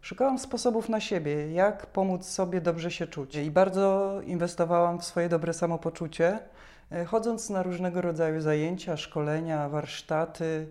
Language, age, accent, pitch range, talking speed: Polish, 40-59, native, 160-185 Hz, 135 wpm